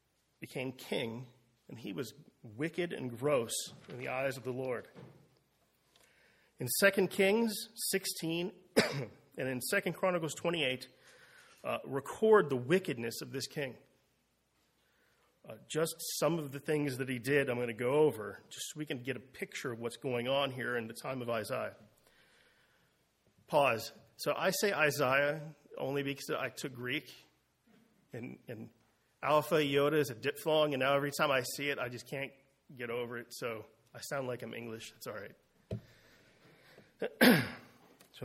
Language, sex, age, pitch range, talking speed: English, male, 40-59, 125-165 Hz, 160 wpm